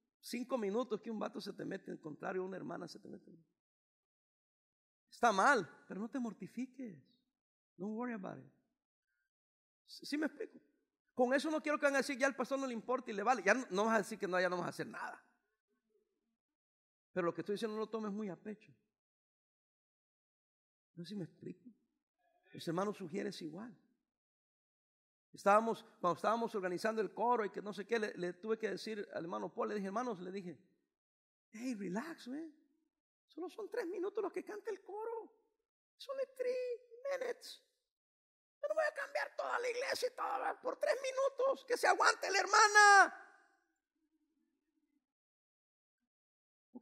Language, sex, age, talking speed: Spanish, male, 50-69, 175 wpm